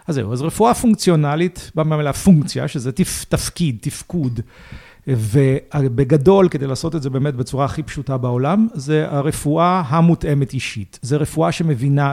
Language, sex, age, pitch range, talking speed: Hebrew, male, 40-59, 135-170 Hz, 140 wpm